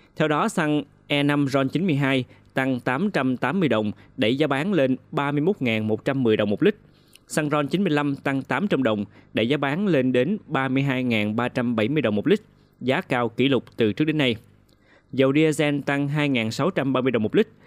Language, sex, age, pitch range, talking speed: Vietnamese, male, 20-39, 120-145 Hz, 160 wpm